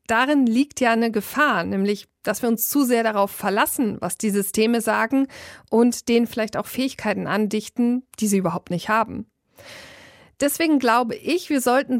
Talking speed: 165 wpm